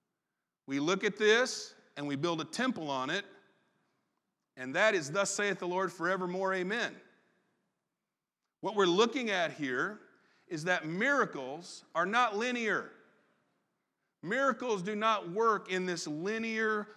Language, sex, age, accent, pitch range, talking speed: English, male, 40-59, American, 155-205 Hz, 135 wpm